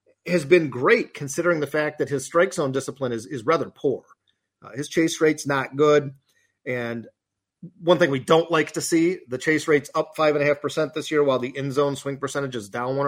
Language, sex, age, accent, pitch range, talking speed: English, male, 40-59, American, 140-175 Hz, 225 wpm